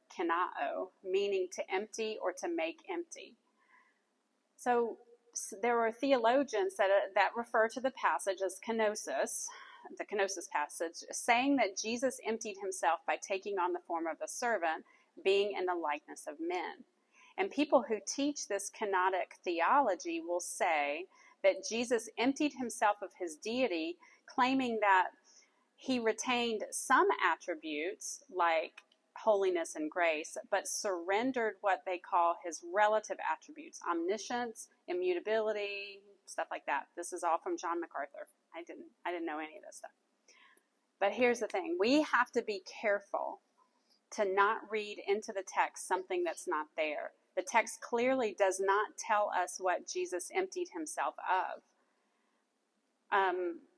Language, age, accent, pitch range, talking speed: English, 40-59, American, 190-300 Hz, 140 wpm